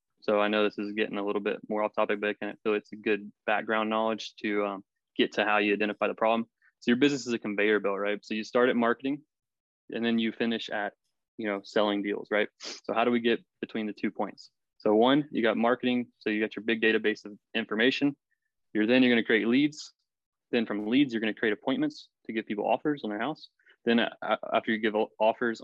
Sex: male